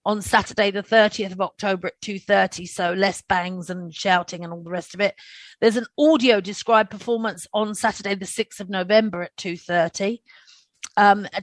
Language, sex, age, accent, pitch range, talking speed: English, female, 40-59, British, 185-230 Hz, 190 wpm